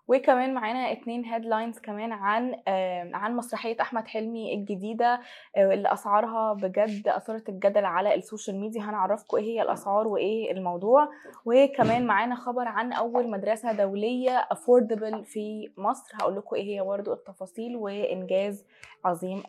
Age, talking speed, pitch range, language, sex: 20-39, 135 wpm, 205-240 Hz, Arabic, female